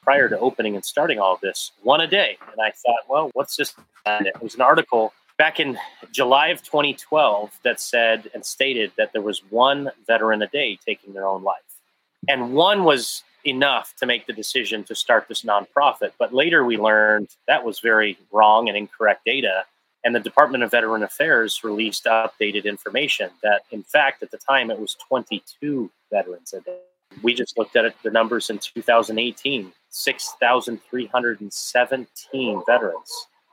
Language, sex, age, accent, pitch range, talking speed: English, male, 30-49, American, 110-140 Hz, 175 wpm